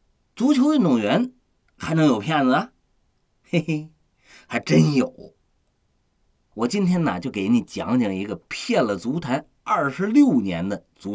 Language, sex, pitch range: Chinese, male, 155-255 Hz